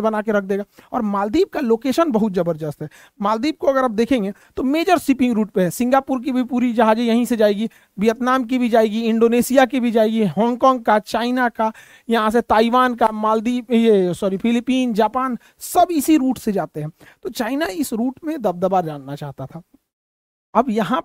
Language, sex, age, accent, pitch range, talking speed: Hindi, male, 50-69, native, 210-260 Hz, 185 wpm